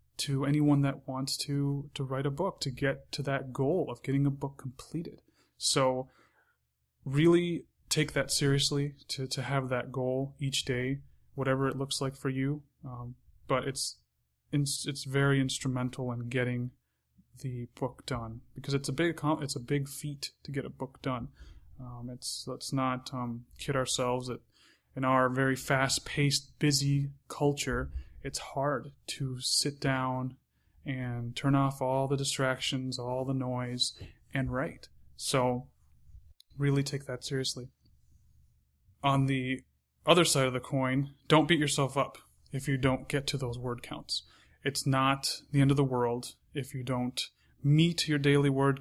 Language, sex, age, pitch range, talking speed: English, male, 20-39, 125-140 Hz, 160 wpm